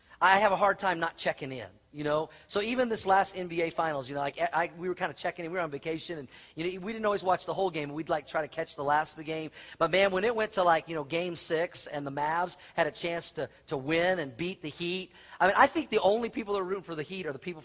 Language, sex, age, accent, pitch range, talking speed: English, male, 40-59, American, 150-185 Hz, 310 wpm